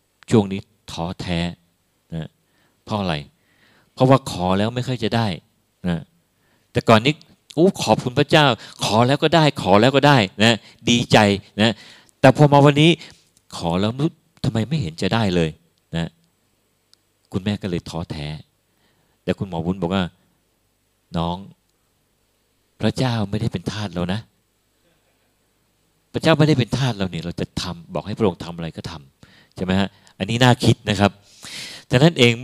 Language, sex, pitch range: Thai, male, 95-130 Hz